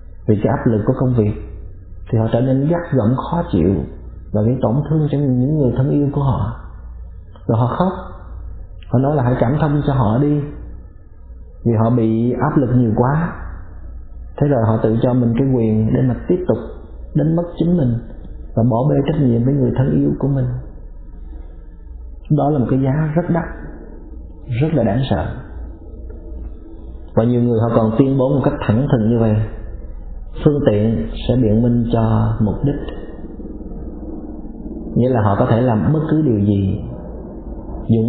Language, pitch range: Vietnamese, 90-130 Hz